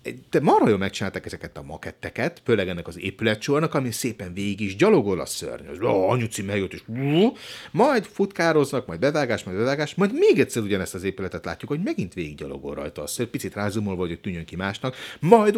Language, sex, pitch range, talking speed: Hungarian, male, 100-140 Hz, 170 wpm